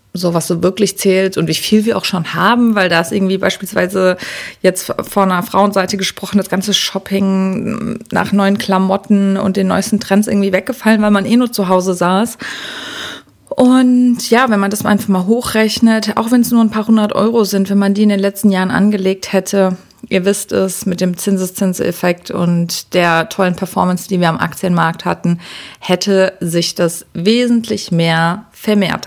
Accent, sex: German, female